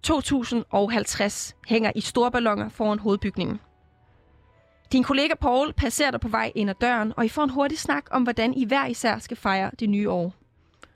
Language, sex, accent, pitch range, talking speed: Danish, female, native, 215-255 Hz, 180 wpm